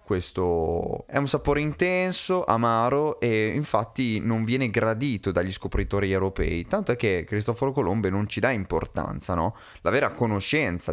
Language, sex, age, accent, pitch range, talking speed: Italian, male, 20-39, native, 90-120 Hz, 150 wpm